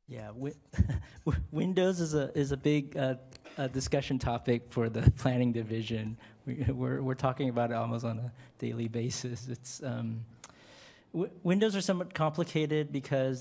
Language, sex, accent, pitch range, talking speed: English, male, American, 115-140 Hz, 155 wpm